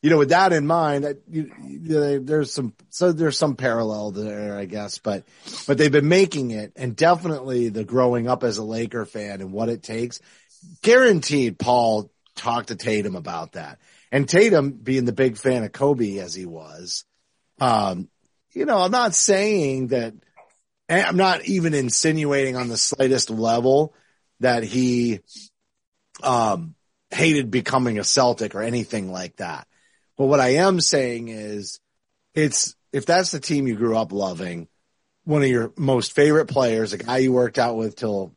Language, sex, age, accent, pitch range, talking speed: English, male, 30-49, American, 105-145 Hz, 170 wpm